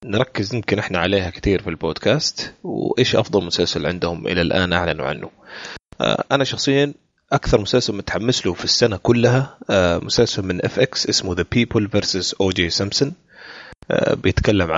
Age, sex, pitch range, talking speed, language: 30-49, male, 85-110 Hz, 155 wpm, Arabic